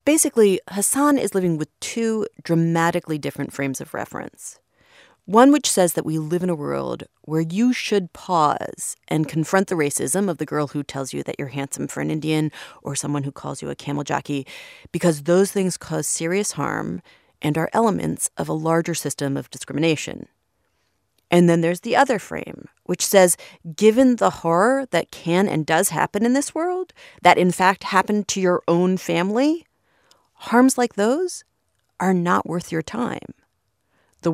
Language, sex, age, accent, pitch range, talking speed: English, female, 30-49, American, 155-200 Hz, 175 wpm